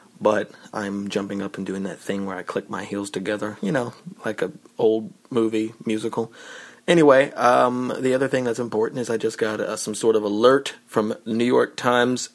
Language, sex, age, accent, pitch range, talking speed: English, male, 30-49, American, 105-125 Hz, 200 wpm